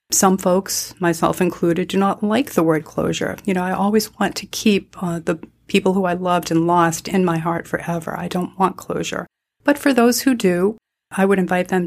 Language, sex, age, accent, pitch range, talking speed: English, female, 40-59, American, 170-195 Hz, 210 wpm